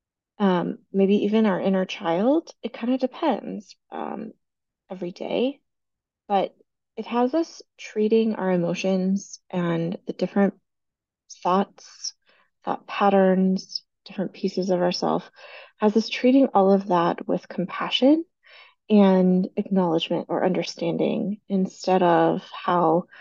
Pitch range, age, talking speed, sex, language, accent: 185-235 Hz, 20-39, 115 wpm, female, English, American